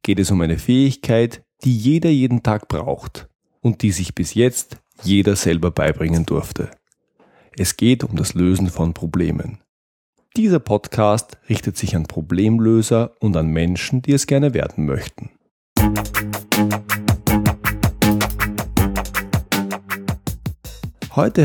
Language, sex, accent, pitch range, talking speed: German, male, German, 90-115 Hz, 115 wpm